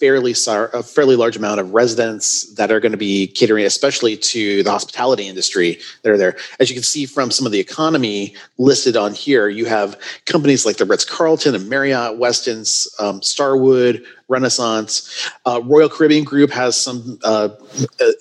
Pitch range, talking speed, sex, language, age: 110-140 Hz, 175 wpm, male, English, 30-49